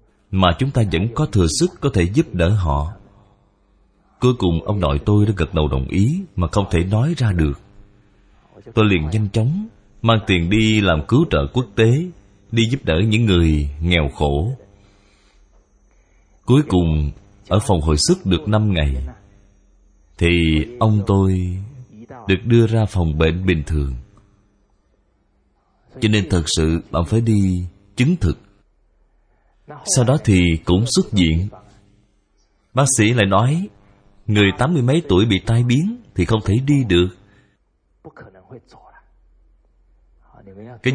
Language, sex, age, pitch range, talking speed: Vietnamese, male, 30-49, 85-115 Hz, 145 wpm